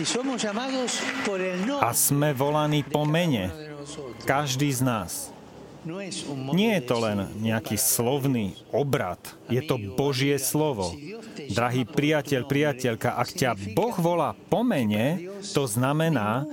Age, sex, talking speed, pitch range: 40-59, male, 110 wpm, 115-150 Hz